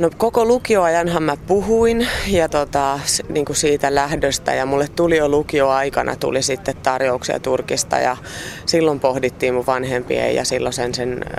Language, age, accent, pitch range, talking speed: Finnish, 30-49, native, 130-160 Hz, 150 wpm